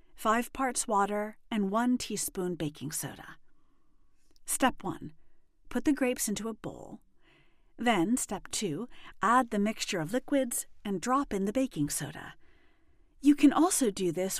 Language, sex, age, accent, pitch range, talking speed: English, female, 40-59, American, 185-265 Hz, 145 wpm